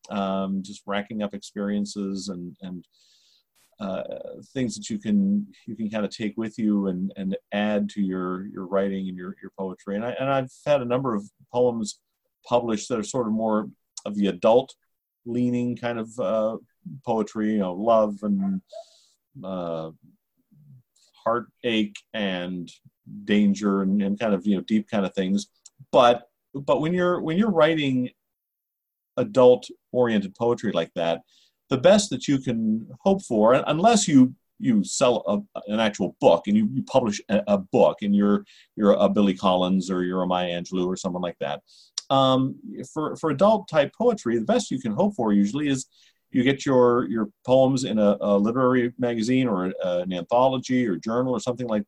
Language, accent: English, American